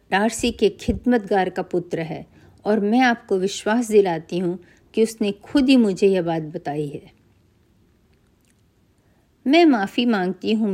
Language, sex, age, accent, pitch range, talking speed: Hindi, female, 50-69, native, 160-215 Hz, 140 wpm